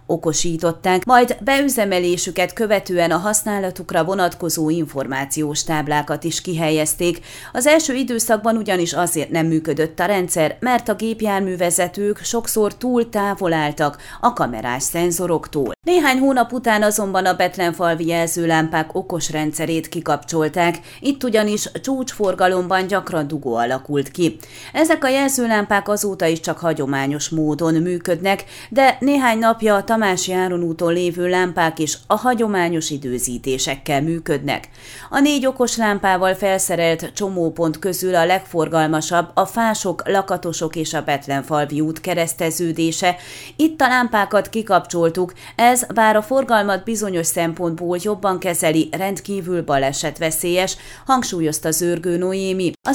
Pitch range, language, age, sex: 160-215 Hz, Hungarian, 30-49, female